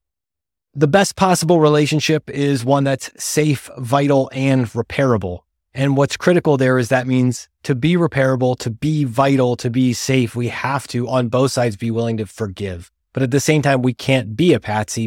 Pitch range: 110-140 Hz